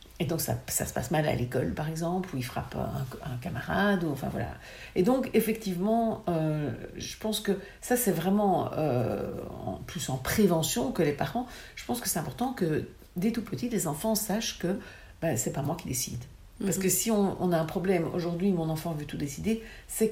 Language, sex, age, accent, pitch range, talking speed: French, female, 60-79, French, 150-195 Hz, 215 wpm